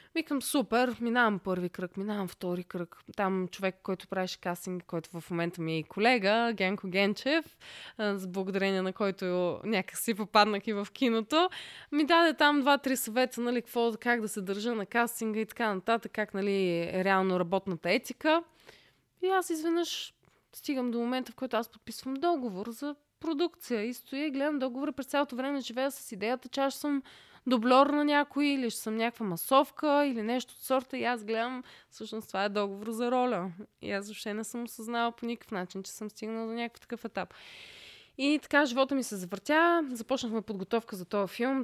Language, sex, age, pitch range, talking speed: Bulgarian, female, 20-39, 195-260 Hz, 185 wpm